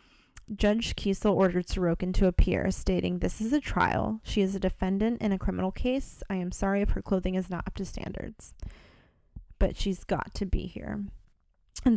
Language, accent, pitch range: English, American, 175-205 Hz